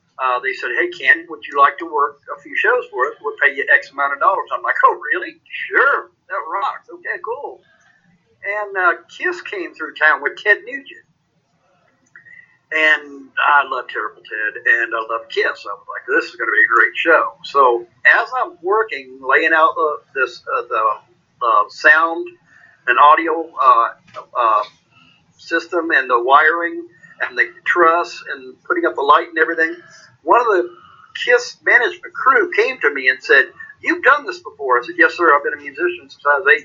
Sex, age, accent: male, 50-69, American